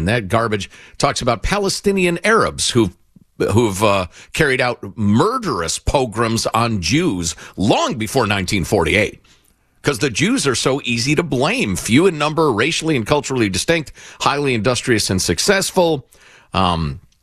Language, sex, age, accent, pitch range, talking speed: English, male, 50-69, American, 105-170 Hz, 130 wpm